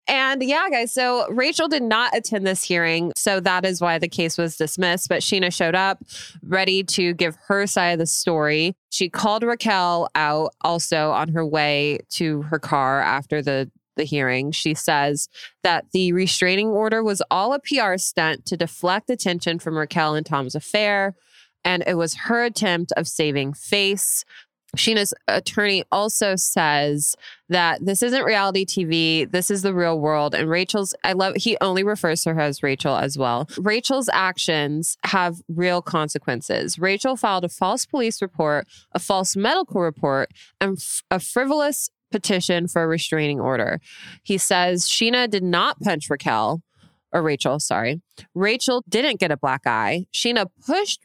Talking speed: 165 wpm